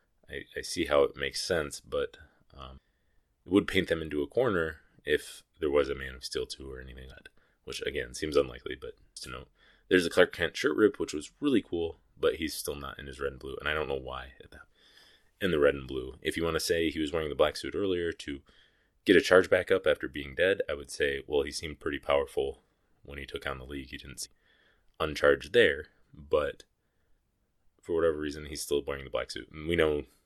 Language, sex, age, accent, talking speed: English, male, 20-39, American, 235 wpm